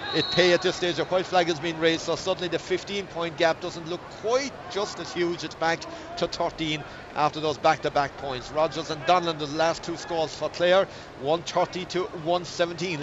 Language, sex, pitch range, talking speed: English, male, 170-185 Hz, 200 wpm